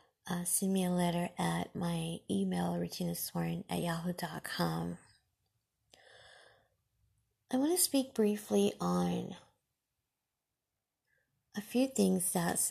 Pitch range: 160-200 Hz